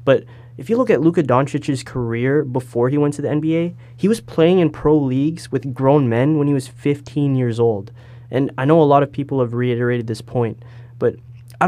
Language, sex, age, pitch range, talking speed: English, male, 20-39, 120-155 Hz, 215 wpm